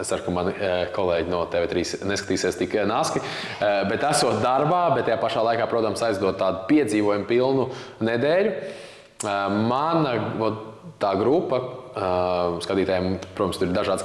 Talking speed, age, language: 120 wpm, 20-39, English